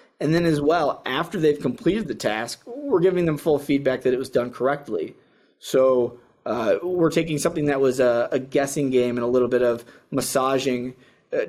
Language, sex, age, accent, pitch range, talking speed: English, male, 20-39, American, 125-145 Hz, 195 wpm